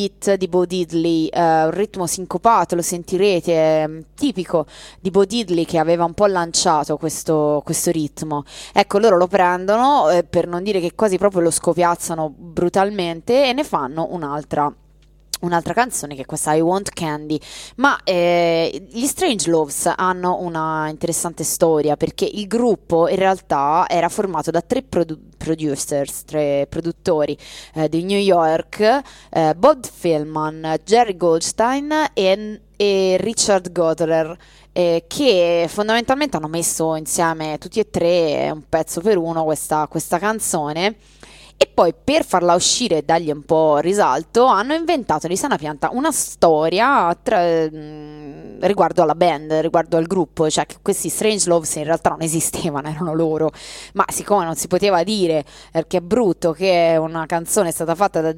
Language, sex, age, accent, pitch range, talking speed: Italian, female, 20-39, native, 160-195 Hz, 155 wpm